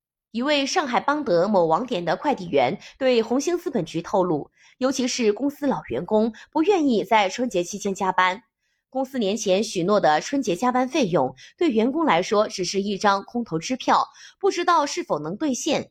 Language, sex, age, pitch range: Chinese, female, 20-39, 200-290 Hz